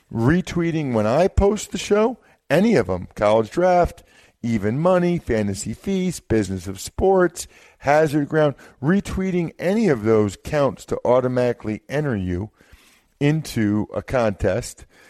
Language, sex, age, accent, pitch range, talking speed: English, male, 50-69, American, 105-150 Hz, 125 wpm